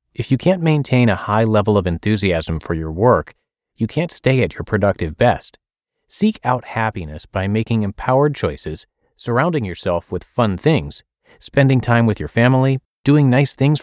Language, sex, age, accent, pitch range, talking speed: English, male, 30-49, American, 95-135 Hz, 170 wpm